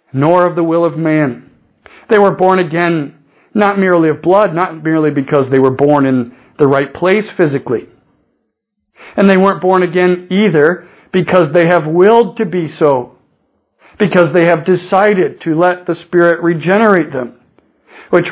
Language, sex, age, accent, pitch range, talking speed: English, male, 50-69, American, 125-180 Hz, 160 wpm